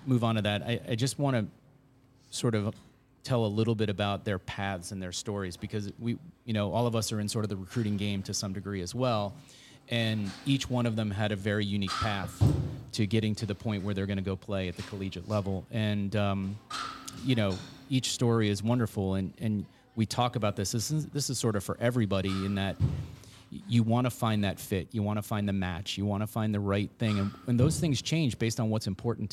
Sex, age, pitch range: male, 30-49, 100-115 Hz